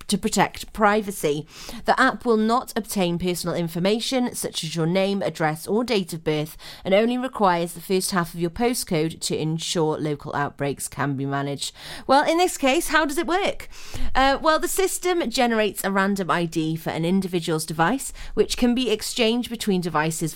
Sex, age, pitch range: female, 30-49, 160-225 Hz